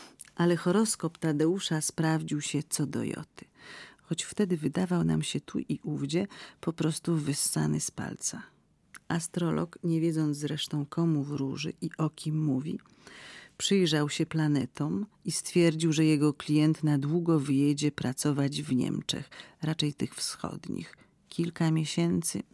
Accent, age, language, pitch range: native, 40-59, Polish, 145-170 Hz